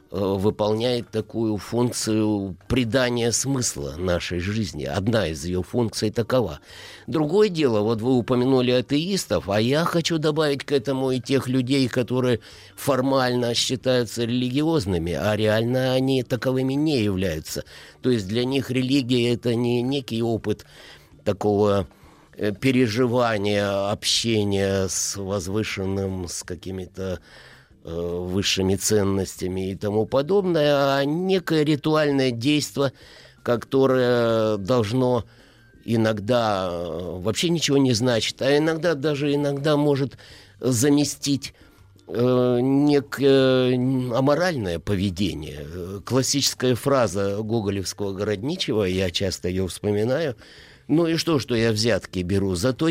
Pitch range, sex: 100-135 Hz, male